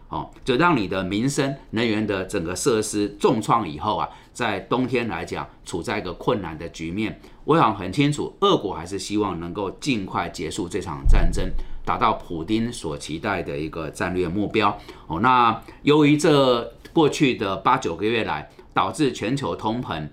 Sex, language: male, Chinese